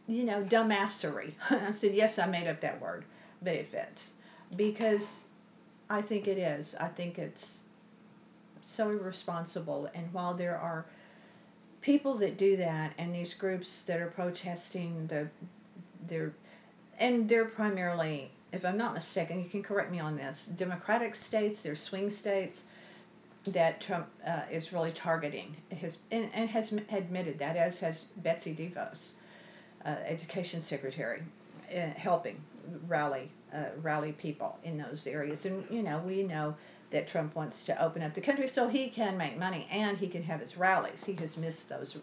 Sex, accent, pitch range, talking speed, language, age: female, American, 165-205 Hz, 165 wpm, English, 50-69